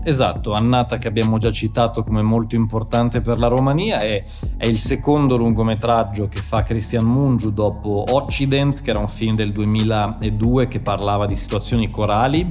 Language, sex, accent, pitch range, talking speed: Italian, male, native, 105-120 Hz, 165 wpm